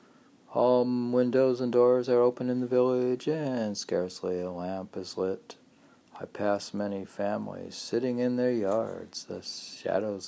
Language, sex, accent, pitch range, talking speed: English, male, American, 100-130 Hz, 145 wpm